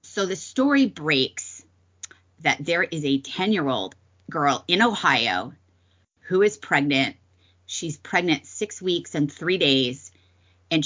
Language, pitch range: English, 125-175 Hz